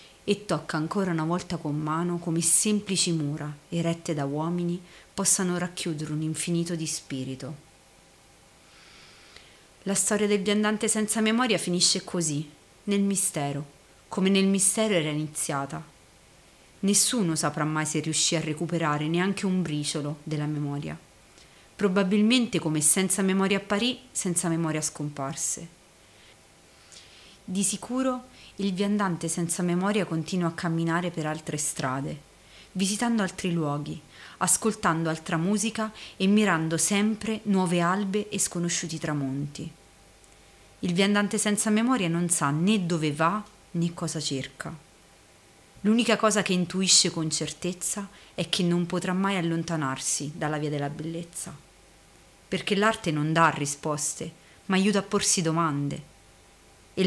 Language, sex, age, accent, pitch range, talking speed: Italian, female, 30-49, native, 155-200 Hz, 125 wpm